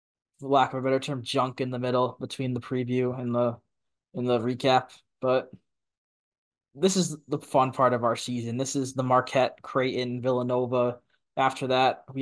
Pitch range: 125-150 Hz